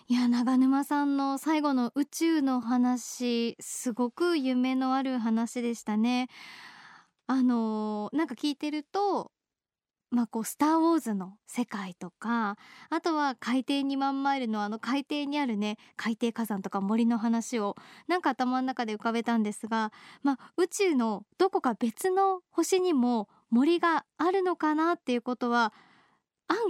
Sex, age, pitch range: male, 20-39, 230-300 Hz